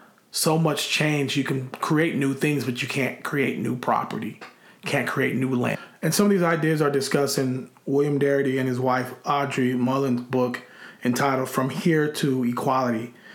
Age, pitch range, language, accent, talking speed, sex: 30-49, 130-150 Hz, English, American, 175 wpm, male